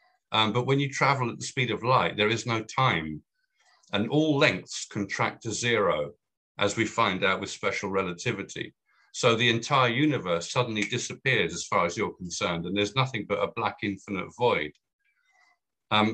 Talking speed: 175 wpm